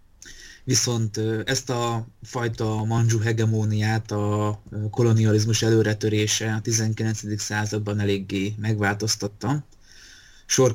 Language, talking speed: Hungarian, 85 wpm